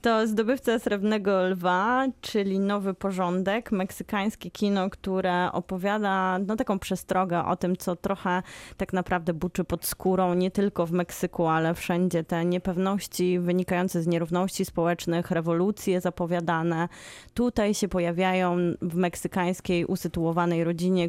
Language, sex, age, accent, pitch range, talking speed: Polish, female, 20-39, native, 175-205 Hz, 125 wpm